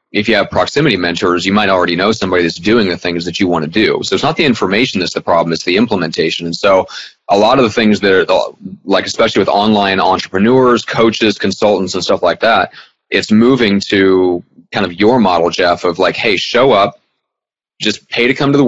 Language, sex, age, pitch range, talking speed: English, male, 30-49, 95-110 Hz, 220 wpm